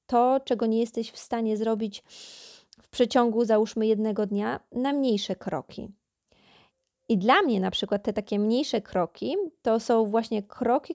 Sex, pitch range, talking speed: female, 205-240 Hz, 155 wpm